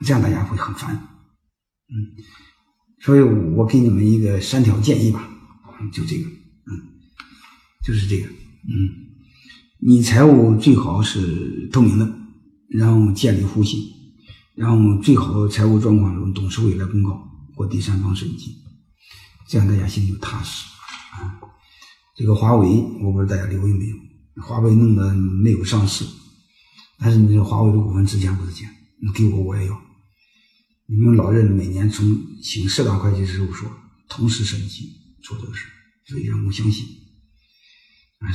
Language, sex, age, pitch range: Chinese, male, 50-69, 100-125 Hz